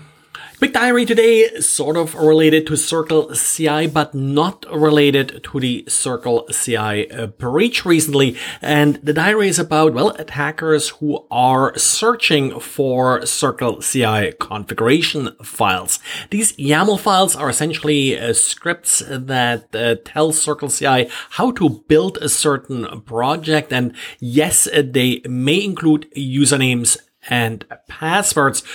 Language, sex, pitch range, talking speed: English, male, 125-155 Hz, 125 wpm